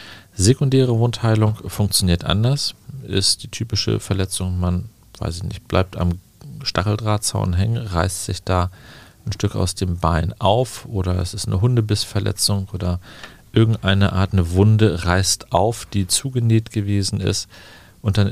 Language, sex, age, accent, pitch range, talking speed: German, male, 40-59, German, 95-110 Hz, 140 wpm